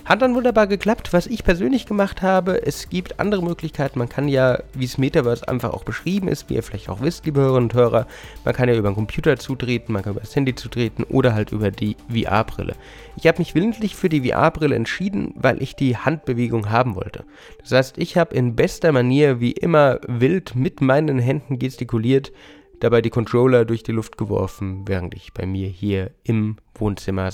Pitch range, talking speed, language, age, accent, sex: 110-160 Hz, 200 wpm, German, 30-49, German, male